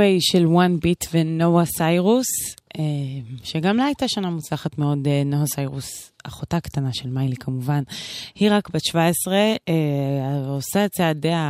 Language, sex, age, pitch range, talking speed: Hebrew, female, 20-39, 140-175 Hz, 135 wpm